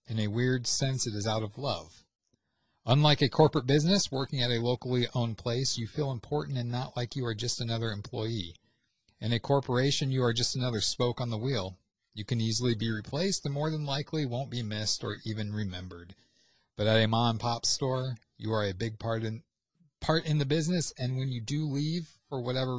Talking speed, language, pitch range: 210 wpm, English, 110-140 Hz